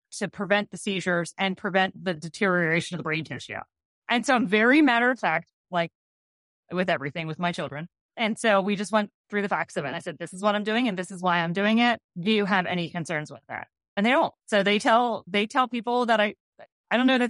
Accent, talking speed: American, 245 wpm